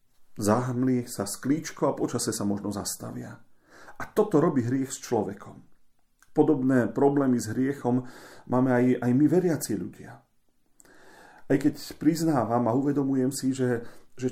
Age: 40-59